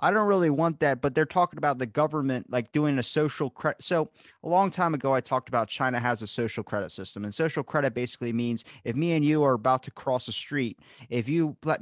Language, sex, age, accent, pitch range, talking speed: English, male, 30-49, American, 120-160 Hz, 250 wpm